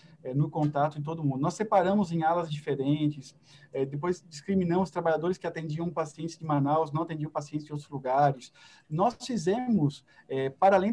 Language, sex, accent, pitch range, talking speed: Portuguese, male, Brazilian, 155-200 Hz, 170 wpm